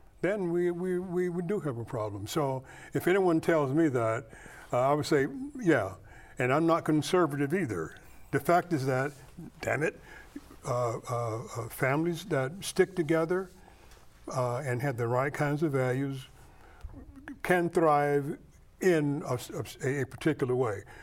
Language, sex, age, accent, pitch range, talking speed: English, male, 60-79, American, 115-155 Hz, 150 wpm